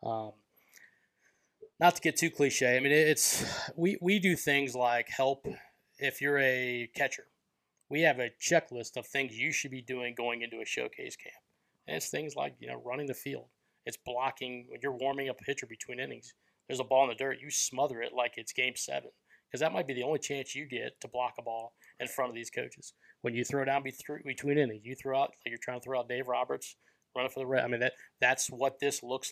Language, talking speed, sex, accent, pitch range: English, 225 wpm, male, American, 120-140 Hz